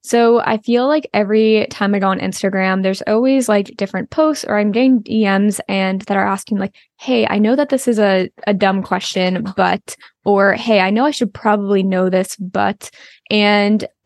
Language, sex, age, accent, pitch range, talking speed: English, female, 10-29, American, 195-225 Hz, 195 wpm